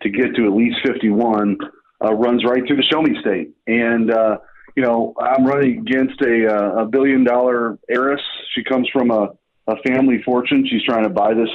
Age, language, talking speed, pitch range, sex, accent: 40-59, English, 195 wpm, 110-130 Hz, male, American